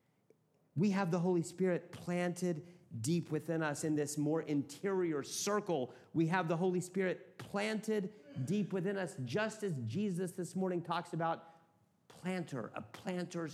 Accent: American